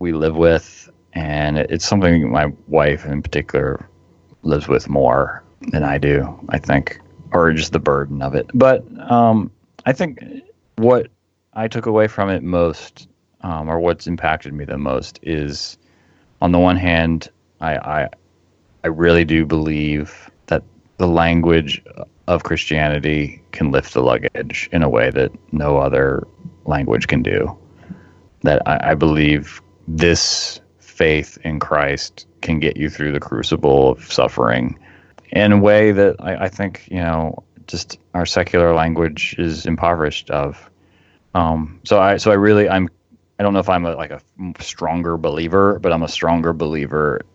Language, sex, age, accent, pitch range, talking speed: English, male, 30-49, American, 75-90 Hz, 160 wpm